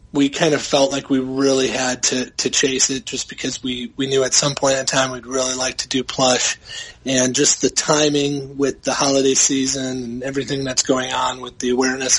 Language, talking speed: English, 215 wpm